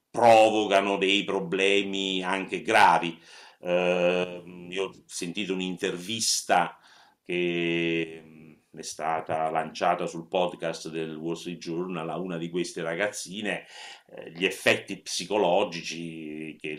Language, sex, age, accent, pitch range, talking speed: Italian, male, 50-69, native, 85-110 Hz, 105 wpm